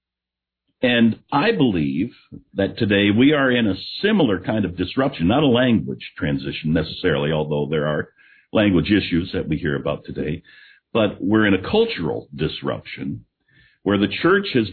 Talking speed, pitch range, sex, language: 155 wpm, 80-110 Hz, male, English